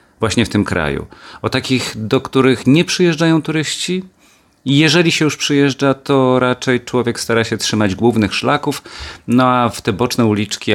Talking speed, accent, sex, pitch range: 160 wpm, native, male, 105-135 Hz